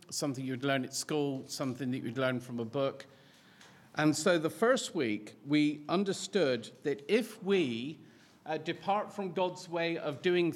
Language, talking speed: English, 165 wpm